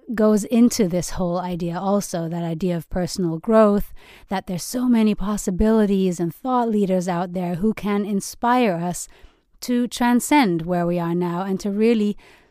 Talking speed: 165 wpm